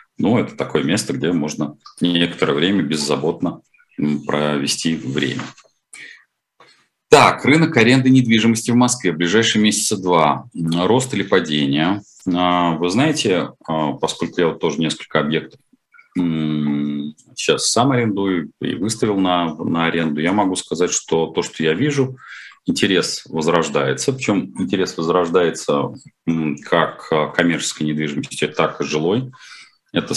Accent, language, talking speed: native, Russian, 120 wpm